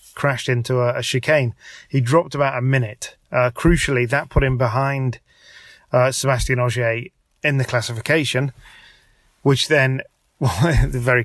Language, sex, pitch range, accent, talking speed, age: English, male, 120-140 Hz, British, 140 wpm, 30-49